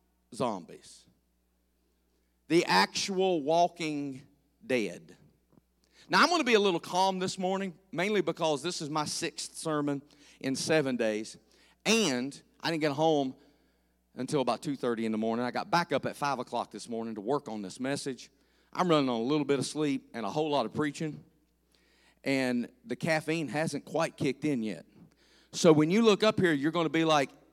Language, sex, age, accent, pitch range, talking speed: English, male, 40-59, American, 140-190 Hz, 180 wpm